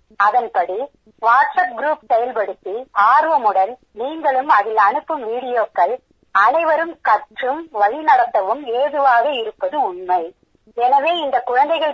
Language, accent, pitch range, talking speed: Tamil, native, 225-310 Hz, 90 wpm